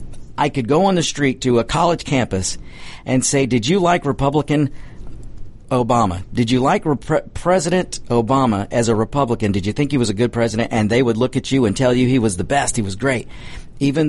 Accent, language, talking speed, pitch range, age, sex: American, English, 215 wpm, 110-140 Hz, 50-69, male